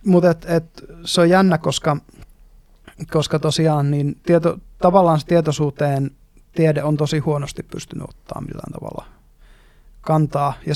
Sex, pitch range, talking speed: male, 145-165 Hz, 115 wpm